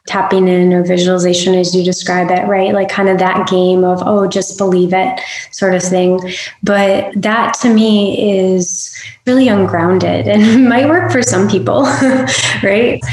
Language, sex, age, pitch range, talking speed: English, female, 20-39, 180-215 Hz, 165 wpm